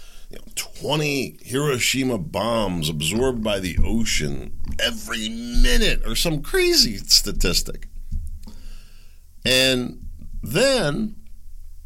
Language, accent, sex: English, American, male